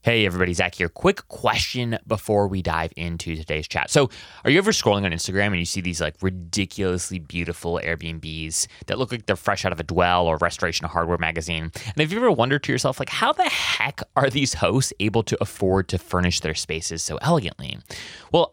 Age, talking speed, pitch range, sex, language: 30-49, 210 wpm, 90-130 Hz, male, English